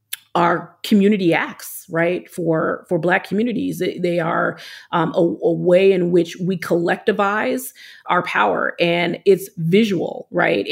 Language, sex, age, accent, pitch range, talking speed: English, female, 30-49, American, 175-210 Hz, 135 wpm